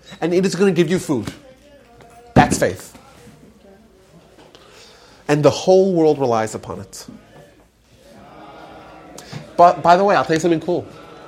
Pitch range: 135-205 Hz